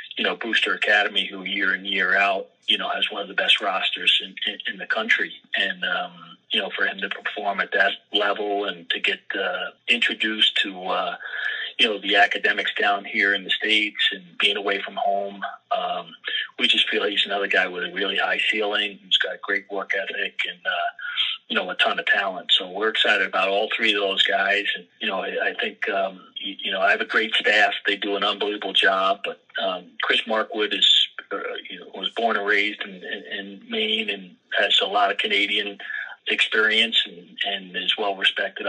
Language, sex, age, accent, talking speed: English, male, 40-59, American, 210 wpm